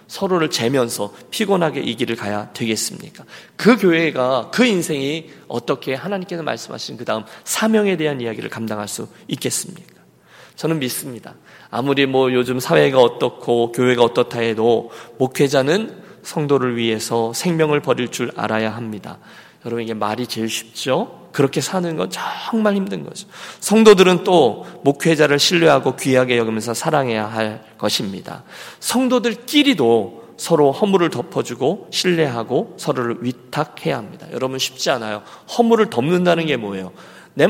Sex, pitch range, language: male, 120-175 Hz, Korean